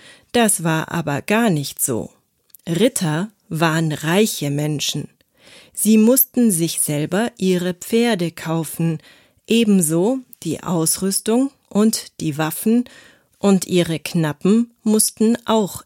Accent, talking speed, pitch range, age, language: German, 105 wpm, 160-220 Hz, 40-59, German